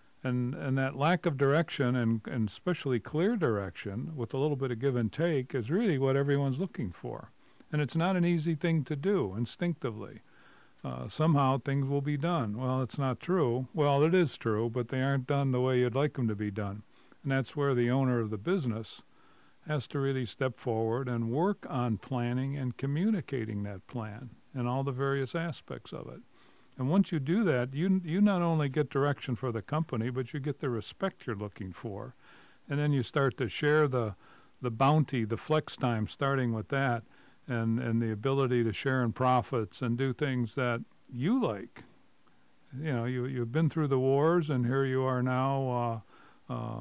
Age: 50-69